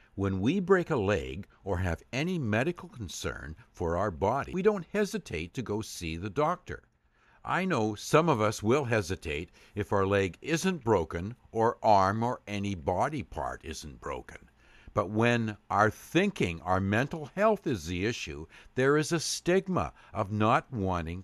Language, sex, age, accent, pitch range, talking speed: English, male, 60-79, American, 95-150 Hz, 165 wpm